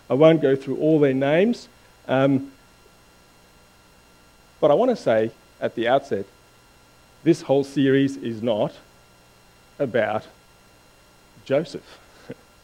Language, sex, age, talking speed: English, male, 40-59, 110 wpm